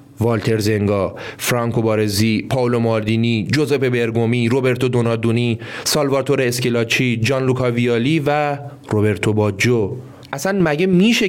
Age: 30-49